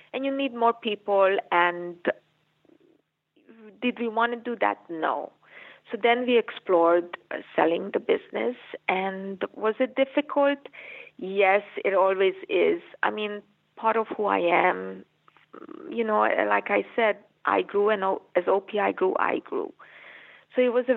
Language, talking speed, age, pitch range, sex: English, 150 wpm, 30-49, 195-275 Hz, female